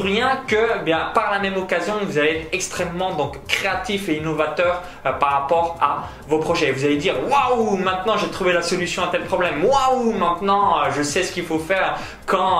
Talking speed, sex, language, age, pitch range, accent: 200 wpm, male, French, 20-39, 150-200 Hz, French